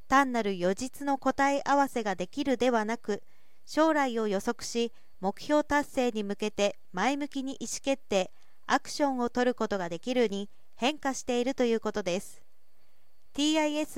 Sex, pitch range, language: female, 220-275 Hz, Japanese